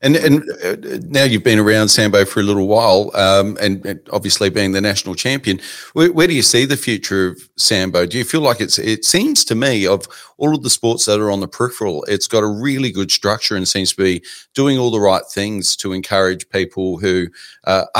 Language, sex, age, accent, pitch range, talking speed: English, male, 40-59, Australian, 90-105 Hz, 225 wpm